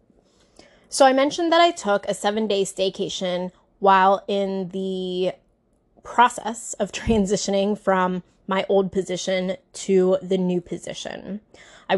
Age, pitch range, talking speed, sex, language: 20-39, 190-230 Hz, 120 wpm, female, English